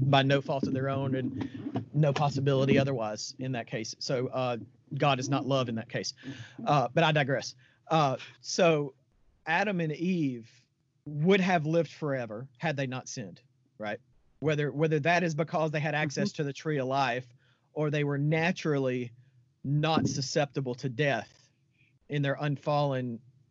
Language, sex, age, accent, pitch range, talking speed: English, male, 40-59, American, 125-150 Hz, 165 wpm